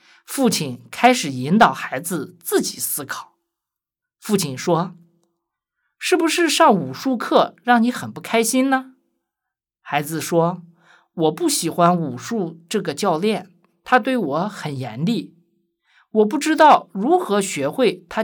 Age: 50-69